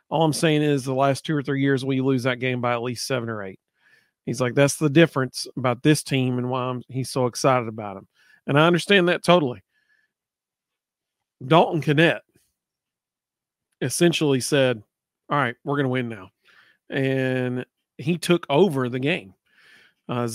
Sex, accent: male, American